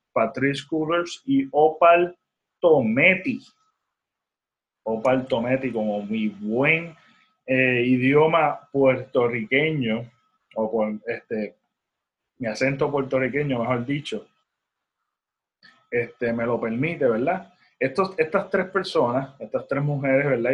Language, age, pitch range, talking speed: Spanish, 30-49, 125-165 Hz, 100 wpm